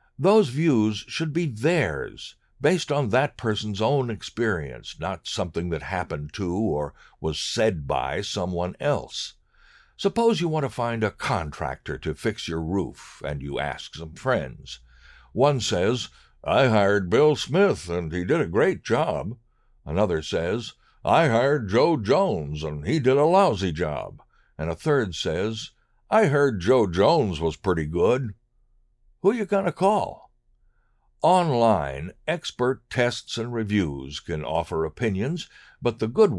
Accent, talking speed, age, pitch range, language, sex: American, 145 wpm, 60-79, 80-135 Hz, English, male